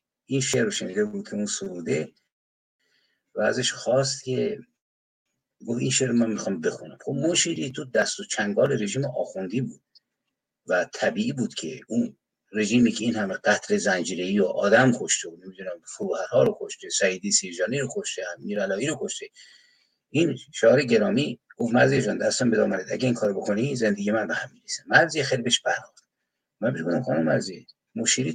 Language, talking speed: Persian, 160 wpm